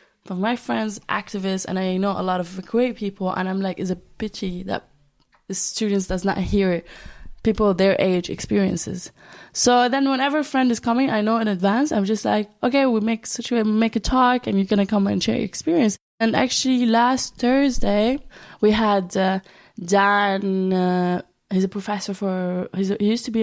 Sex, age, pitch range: female, 20-39, 185-230 Hz